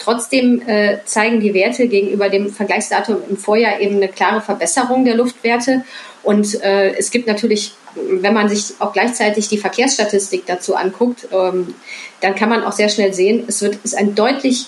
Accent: German